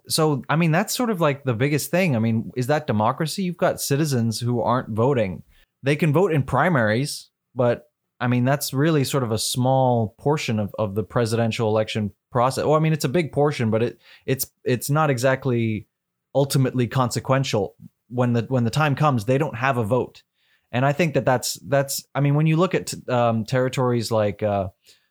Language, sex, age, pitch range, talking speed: English, male, 20-39, 115-140 Hz, 200 wpm